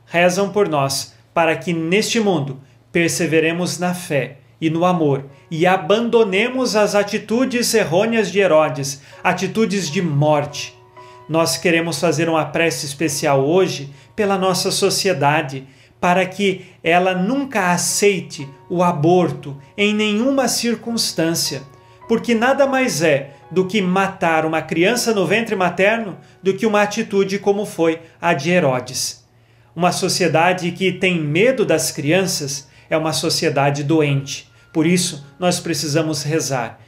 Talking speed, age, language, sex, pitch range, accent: 130 wpm, 40-59, Portuguese, male, 140-190 Hz, Brazilian